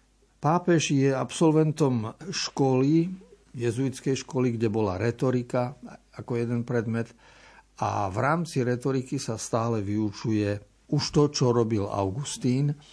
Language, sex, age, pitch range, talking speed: Slovak, male, 50-69, 110-135 Hz, 110 wpm